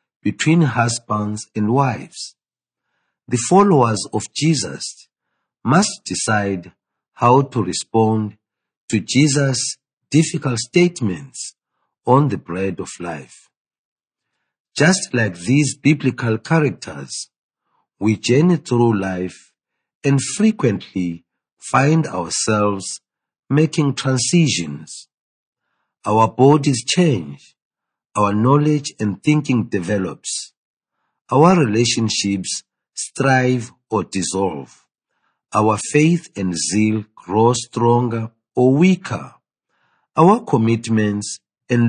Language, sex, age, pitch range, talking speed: English, male, 50-69, 105-145 Hz, 85 wpm